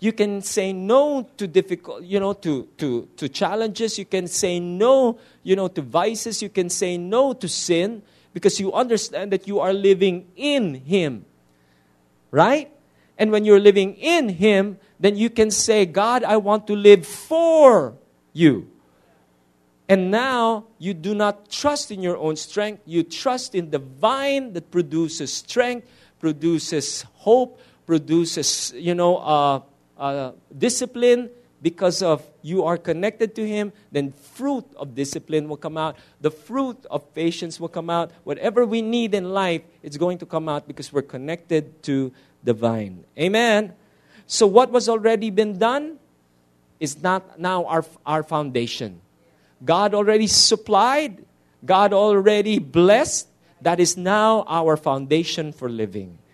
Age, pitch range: 50-69, 155-215 Hz